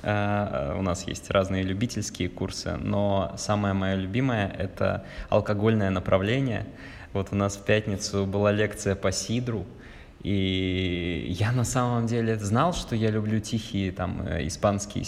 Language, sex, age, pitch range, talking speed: Russian, male, 20-39, 95-110 Hz, 130 wpm